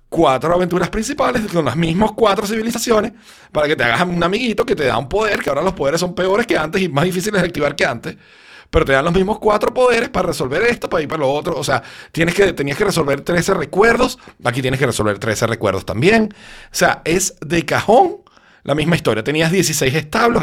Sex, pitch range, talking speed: male, 145-200 Hz, 215 wpm